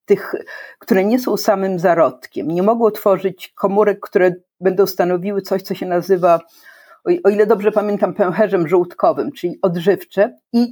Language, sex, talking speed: Polish, female, 145 wpm